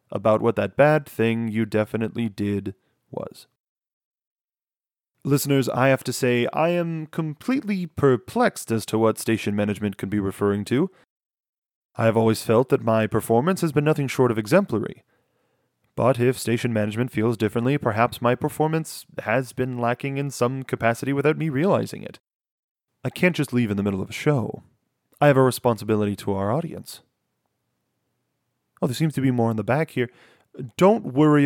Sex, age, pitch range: male, 30-49, 110-145 Hz